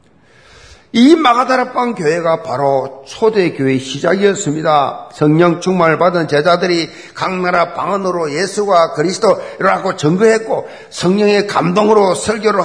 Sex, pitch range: male, 160-225 Hz